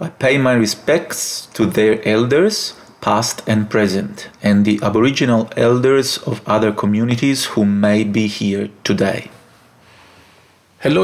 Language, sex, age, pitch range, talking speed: English, male, 40-59, 105-130 Hz, 125 wpm